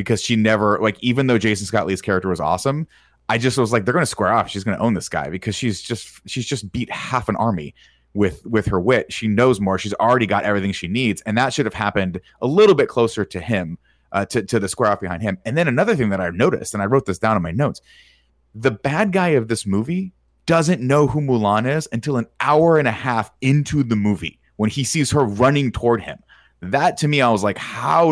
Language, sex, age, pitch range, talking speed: English, male, 30-49, 95-125 Hz, 250 wpm